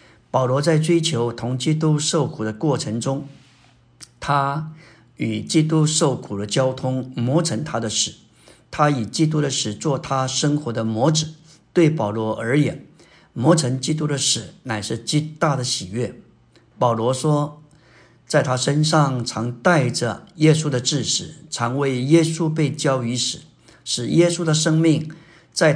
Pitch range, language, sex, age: 120-155 Hz, Chinese, male, 50-69